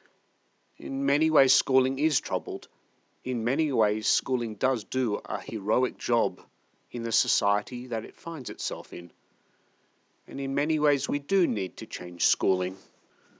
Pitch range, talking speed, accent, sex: 100-140 Hz, 150 wpm, British, male